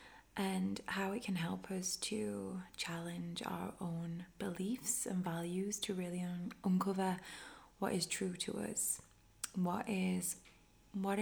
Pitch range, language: 170-195 Hz, English